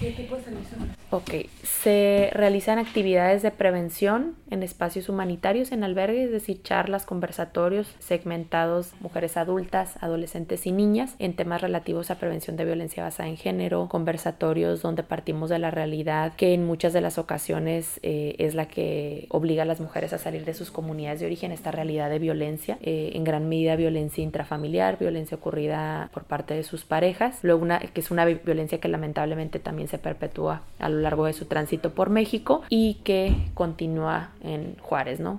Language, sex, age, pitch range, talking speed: English, female, 20-39, 155-180 Hz, 170 wpm